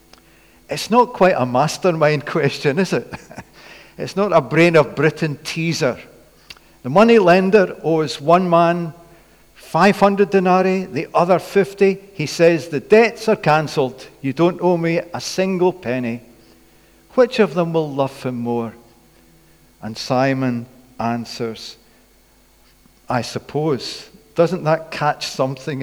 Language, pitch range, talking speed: English, 125-205 Hz, 125 wpm